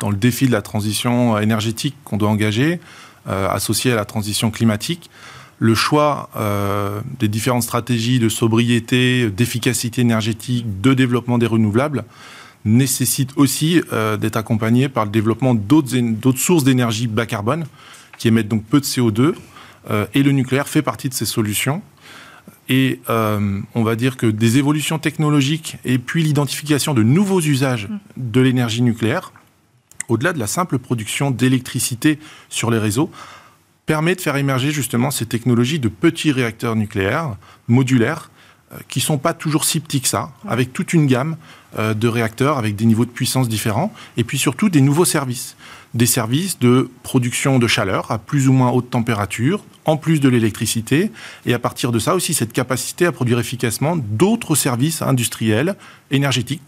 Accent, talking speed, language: French, 165 wpm, French